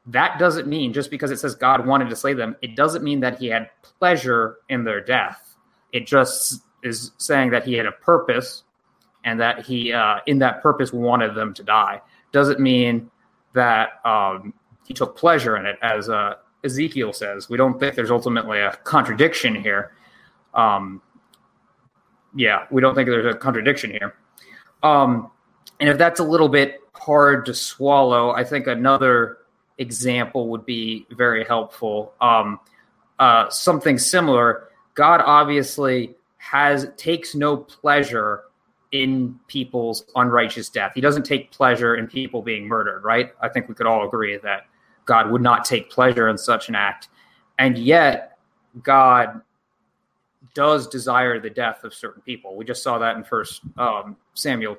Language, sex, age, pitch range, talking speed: English, male, 20-39, 115-140 Hz, 160 wpm